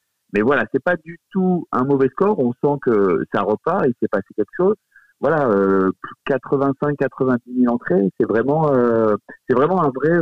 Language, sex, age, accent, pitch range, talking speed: French, male, 50-69, French, 105-140 Hz, 190 wpm